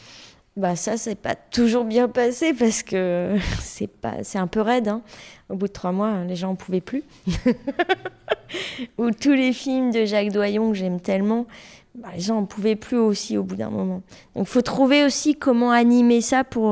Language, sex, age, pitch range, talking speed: French, female, 20-39, 190-230 Hz, 195 wpm